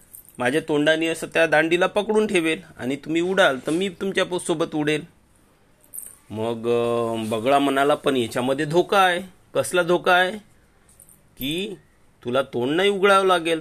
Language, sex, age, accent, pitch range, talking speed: Marathi, male, 40-59, native, 135-180 Hz, 105 wpm